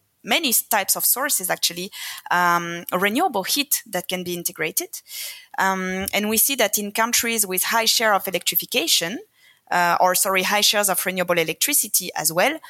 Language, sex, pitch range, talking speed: English, female, 180-240 Hz, 160 wpm